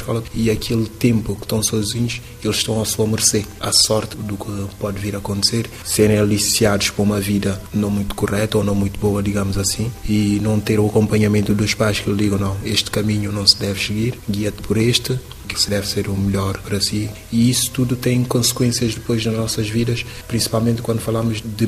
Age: 20-39